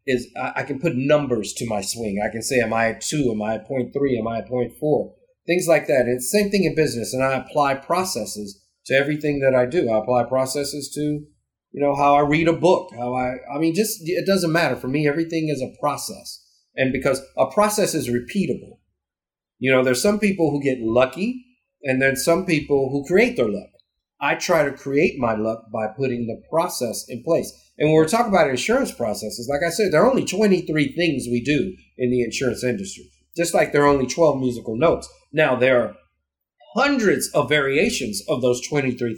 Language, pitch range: English, 120-165 Hz